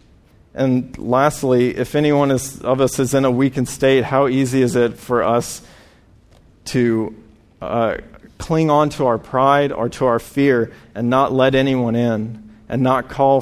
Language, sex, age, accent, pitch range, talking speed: English, male, 40-59, American, 115-135 Hz, 165 wpm